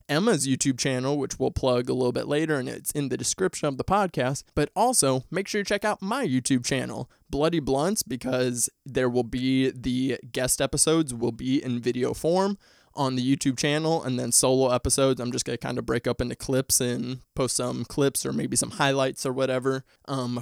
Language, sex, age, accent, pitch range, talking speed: English, male, 20-39, American, 125-150 Hz, 210 wpm